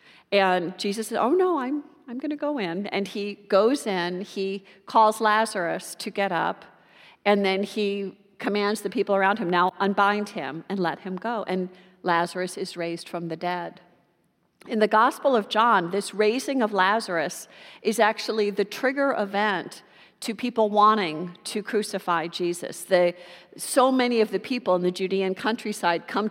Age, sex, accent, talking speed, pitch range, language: 50-69, female, American, 165 wpm, 180-220 Hz, English